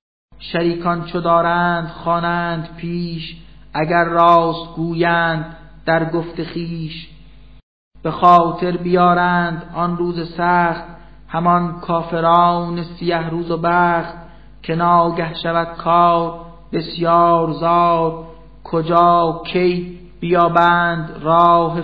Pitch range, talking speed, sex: 155-170 Hz, 95 wpm, male